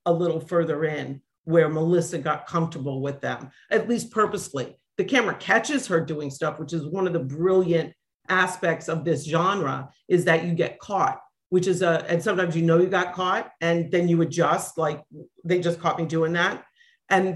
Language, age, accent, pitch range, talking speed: English, 50-69, American, 155-180 Hz, 195 wpm